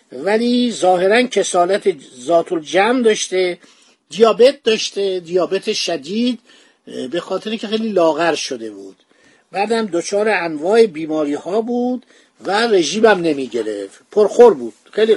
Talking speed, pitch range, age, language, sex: 125 wpm, 170-230 Hz, 50-69, Persian, male